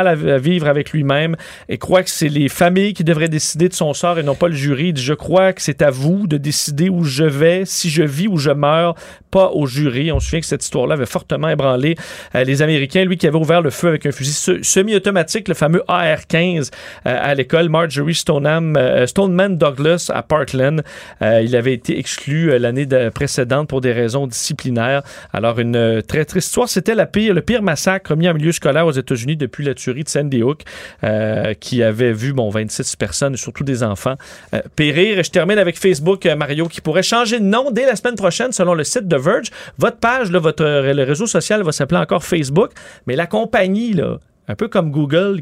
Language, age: French, 40-59